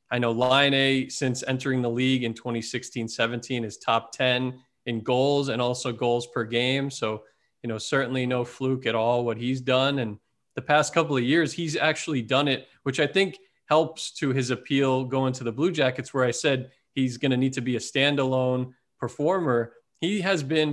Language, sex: English, male